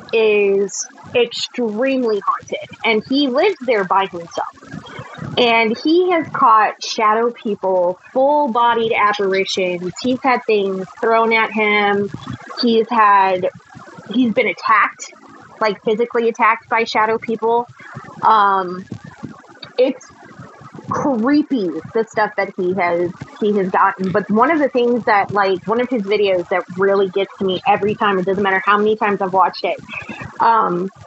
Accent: American